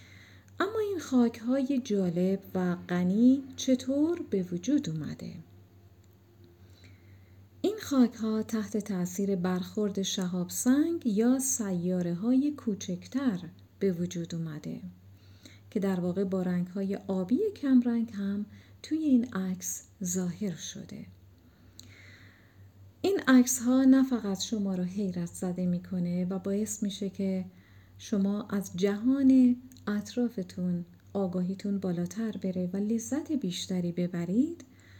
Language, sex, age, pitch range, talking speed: Persian, female, 40-59, 170-245 Hz, 110 wpm